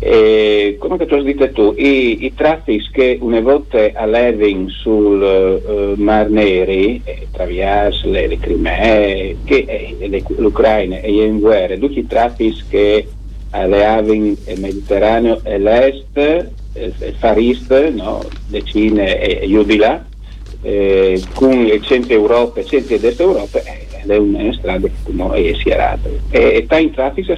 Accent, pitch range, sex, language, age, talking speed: native, 100-135 Hz, male, Italian, 50-69, 180 wpm